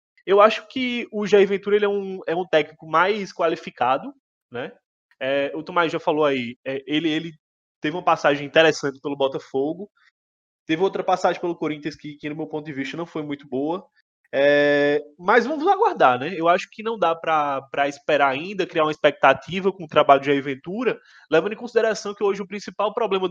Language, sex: Portuguese, male